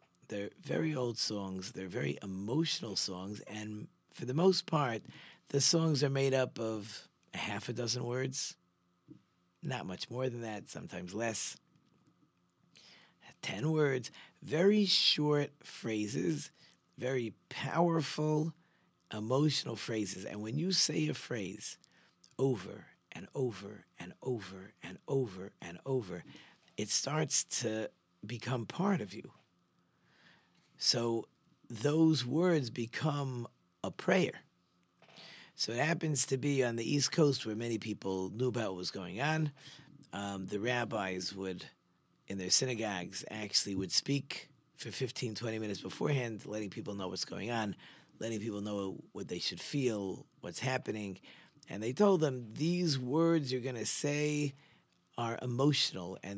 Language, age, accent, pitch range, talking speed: English, 50-69, American, 105-145 Hz, 135 wpm